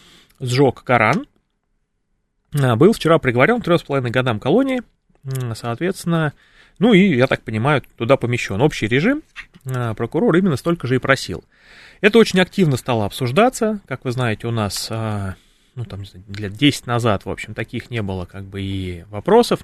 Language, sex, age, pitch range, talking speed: Russian, male, 30-49, 115-170 Hz, 145 wpm